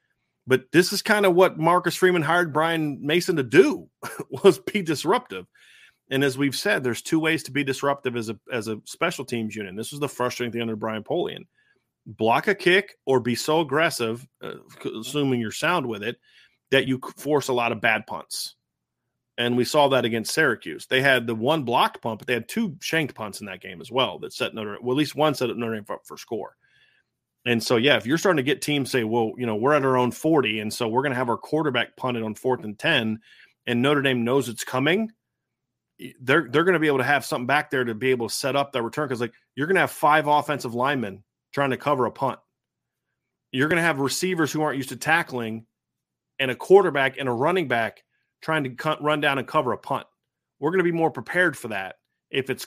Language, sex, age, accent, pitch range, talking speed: English, male, 30-49, American, 120-155 Hz, 230 wpm